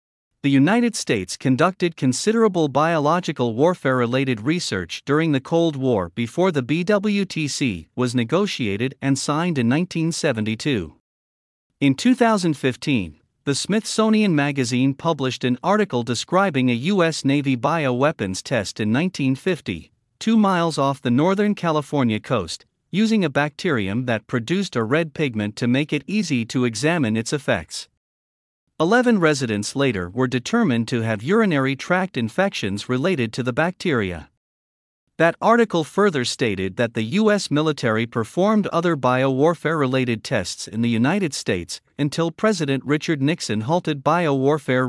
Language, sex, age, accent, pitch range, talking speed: English, male, 50-69, American, 120-170 Hz, 130 wpm